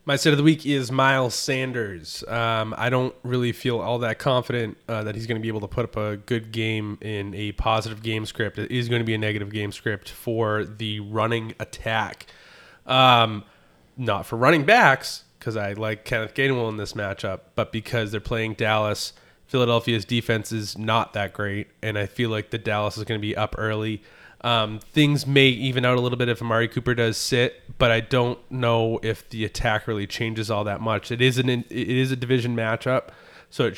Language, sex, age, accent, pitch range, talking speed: English, male, 20-39, American, 110-125 Hz, 210 wpm